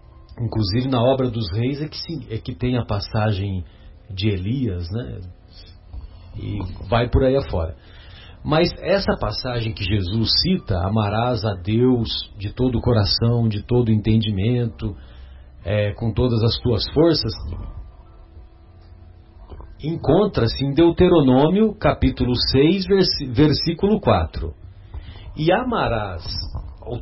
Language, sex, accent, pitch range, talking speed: Portuguese, male, Brazilian, 95-140 Hz, 120 wpm